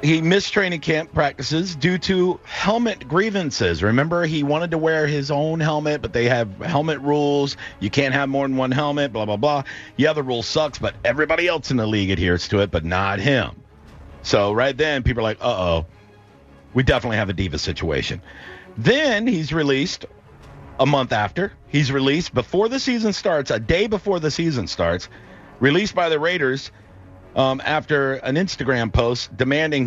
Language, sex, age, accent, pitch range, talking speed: English, male, 50-69, American, 105-150 Hz, 180 wpm